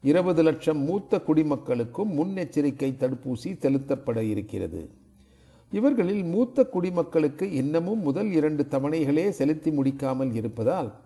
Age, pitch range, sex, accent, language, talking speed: 50-69, 130-170 Hz, male, native, Tamil, 100 wpm